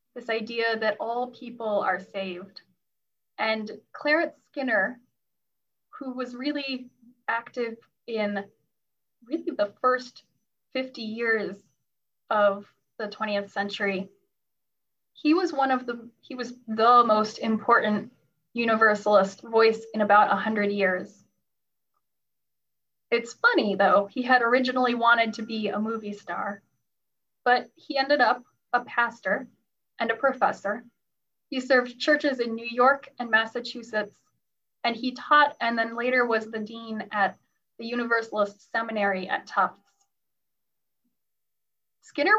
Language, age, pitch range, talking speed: English, 10-29, 210-255 Hz, 120 wpm